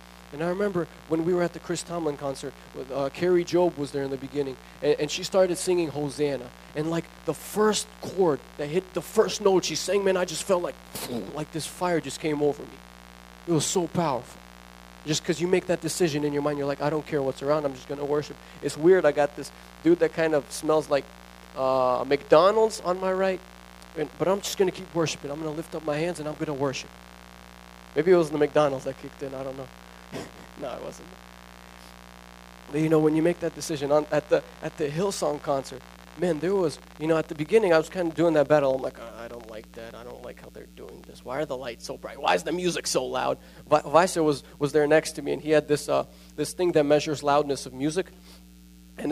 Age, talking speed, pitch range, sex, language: 20-39, 245 wpm, 135-170 Hz, male, English